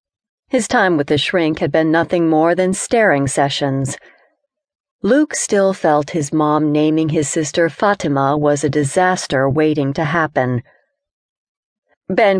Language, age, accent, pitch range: English, 40-59, American, 155-190 Hz